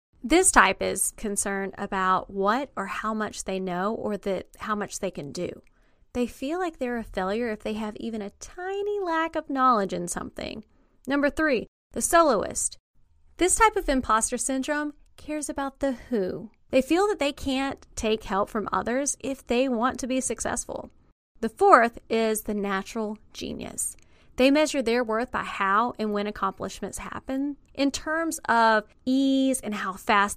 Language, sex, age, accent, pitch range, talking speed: English, female, 30-49, American, 210-275 Hz, 170 wpm